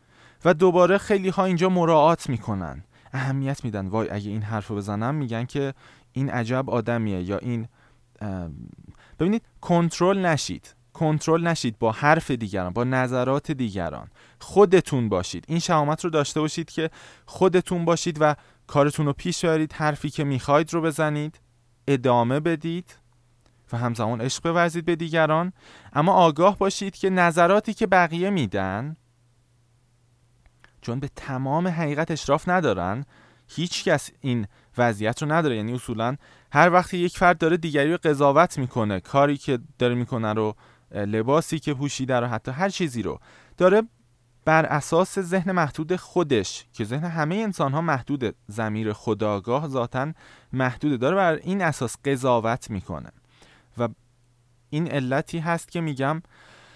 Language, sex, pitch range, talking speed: Persian, male, 120-170 Hz, 140 wpm